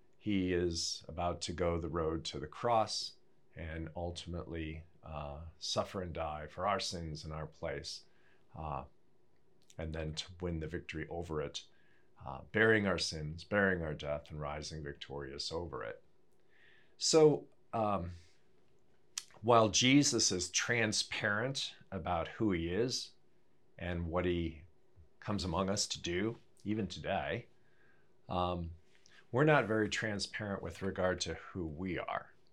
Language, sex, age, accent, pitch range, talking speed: English, male, 40-59, American, 80-95 Hz, 135 wpm